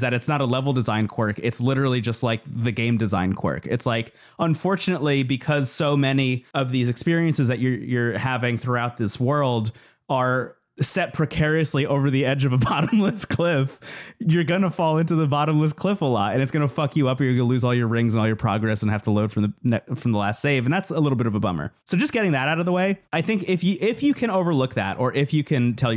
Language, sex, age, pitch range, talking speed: English, male, 30-49, 115-150 Hz, 245 wpm